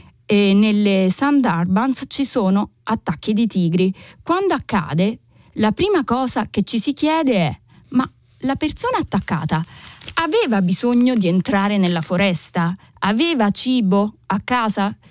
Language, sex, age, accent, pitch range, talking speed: Italian, female, 30-49, native, 175-235 Hz, 125 wpm